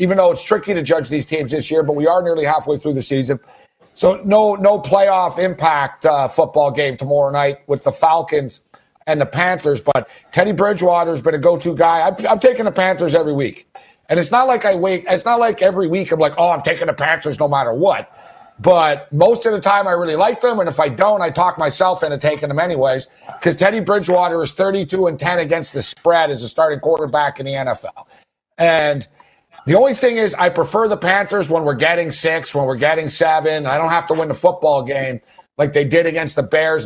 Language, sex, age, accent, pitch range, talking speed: English, male, 50-69, American, 145-185 Hz, 225 wpm